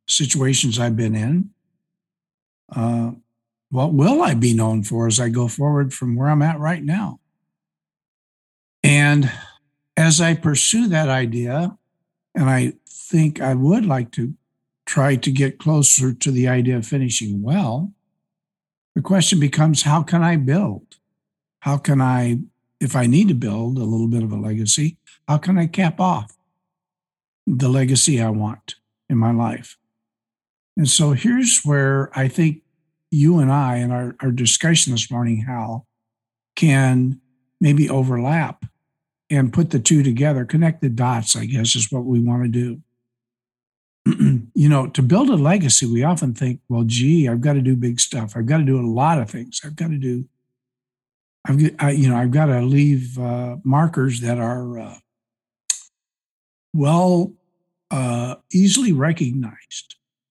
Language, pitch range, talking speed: English, 120-160 Hz, 155 wpm